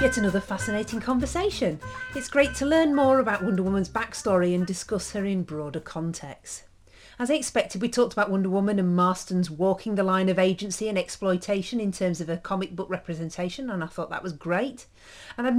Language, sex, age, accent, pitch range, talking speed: English, female, 40-59, British, 175-230 Hz, 195 wpm